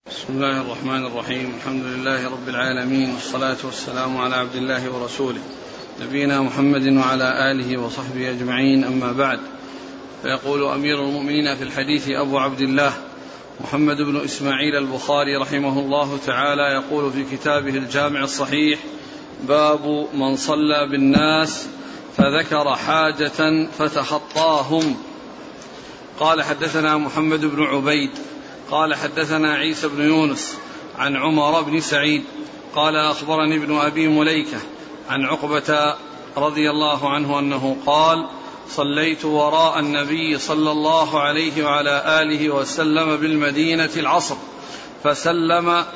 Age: 40-59